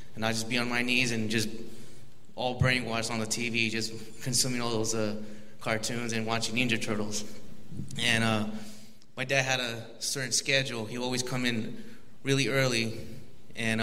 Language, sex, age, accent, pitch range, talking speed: English, male, 20-39, American, 110-130 Hz, 170 wpm